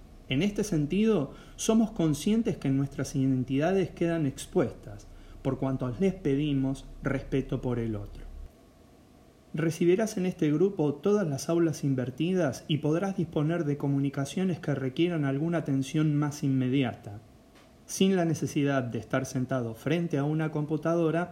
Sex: male